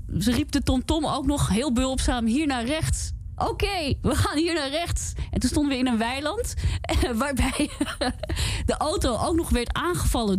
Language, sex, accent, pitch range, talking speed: Dutch, female, Dutch, 190-275 Hz, 185 wpm